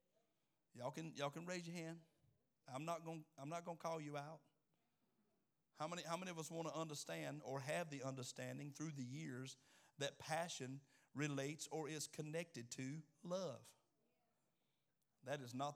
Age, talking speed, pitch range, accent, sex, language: 50-69, 150 wpm, 130-165 Hz, American, male, English